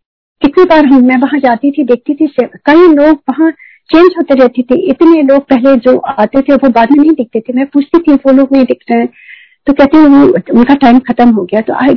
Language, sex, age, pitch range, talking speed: Hindi, female, 50-69, 220-280 Hz, 220 wpm